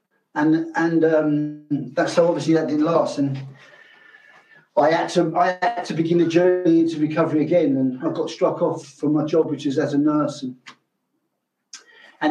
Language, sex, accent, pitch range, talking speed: English, male, British, 150-200 Hz, 180 wpm